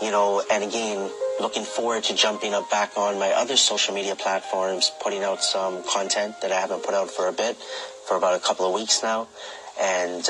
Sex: male